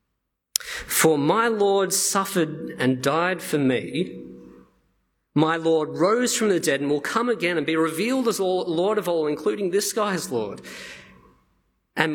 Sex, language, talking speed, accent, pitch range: male, English, 150 wpm, Australian, 115-170 Hz